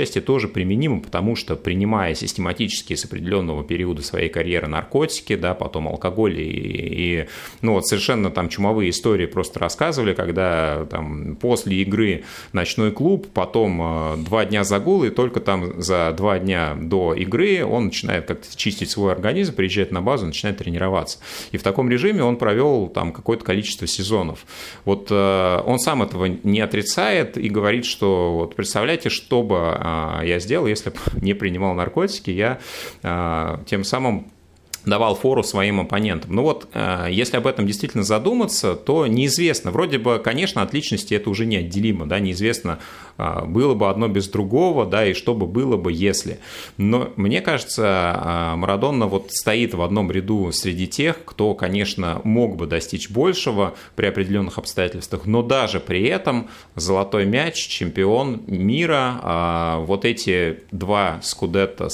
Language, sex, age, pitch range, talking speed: Russian, male, 30-49, 85-110 Hz, 150 wpm